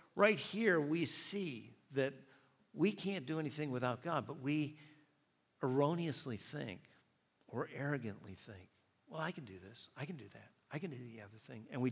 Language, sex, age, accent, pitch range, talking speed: English, male, 50-69, American, 120-150 Hz, 175 wpm